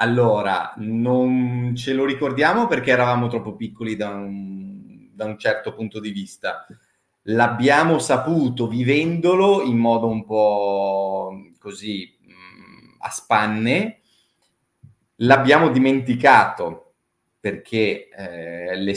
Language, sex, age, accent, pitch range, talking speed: Italian, male, 30-49, native, 105-140 Hz, 100 wpm